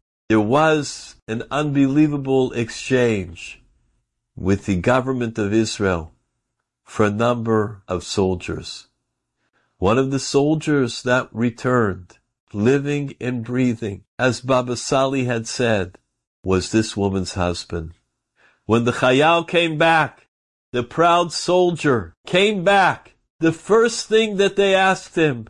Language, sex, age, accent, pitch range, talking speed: English, male, 50-69, American, 110-170 Hz, 115 wpm